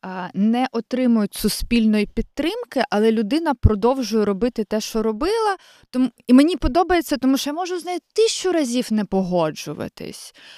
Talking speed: 135 wpm